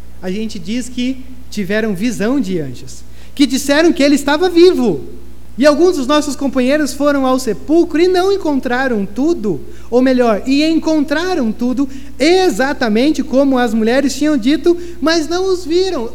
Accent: Brazilian